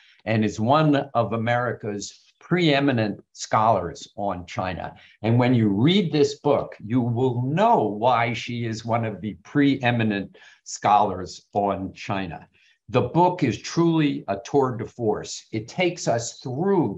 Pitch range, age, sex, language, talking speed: 105-140 Hz, 50-69, male, English, 140 wpm